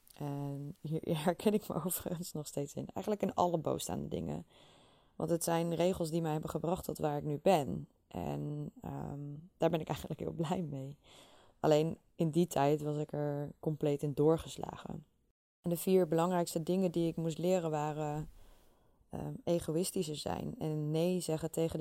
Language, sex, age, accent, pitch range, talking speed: Dutch, female, 20-39, Dutch, 145-170 Hz, 175 wpm